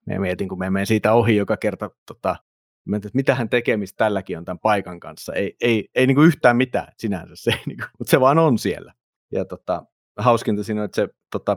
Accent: native